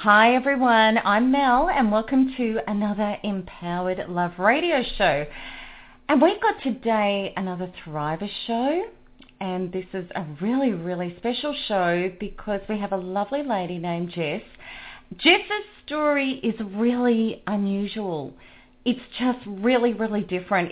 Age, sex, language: 30-49, female, English